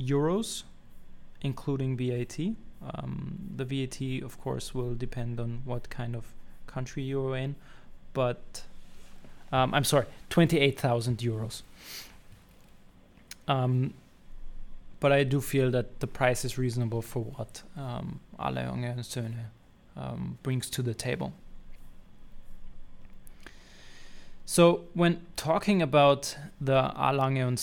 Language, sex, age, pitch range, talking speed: English, male, 20-39, 125-145 Hz, 105 wpm